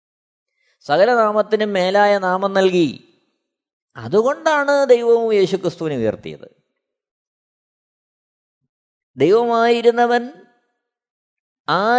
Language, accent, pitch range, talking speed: Malayalam, native, 200-255 Hz, 50 wpm